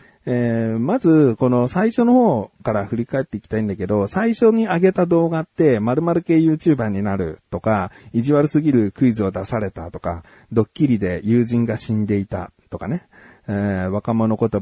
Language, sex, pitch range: Japanese, male, 105-155 Hz